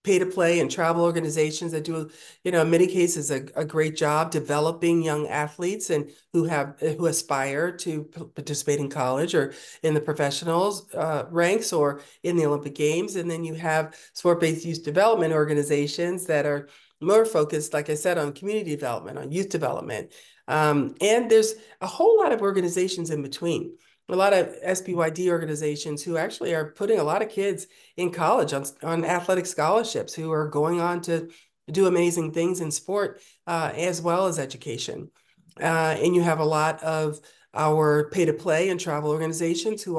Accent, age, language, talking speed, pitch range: American, 40-59, English, 180 wpm, 150-180 Hz